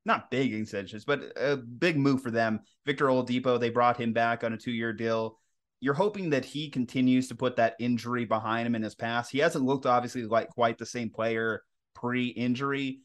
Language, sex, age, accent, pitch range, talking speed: English, male, 30-49, American, 120-150 Hz, 200 wpm